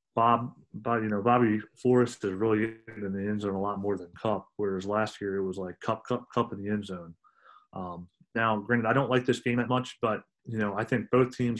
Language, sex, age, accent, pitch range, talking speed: English, male, 30-49, American, 105-120 Hz, 245 wpm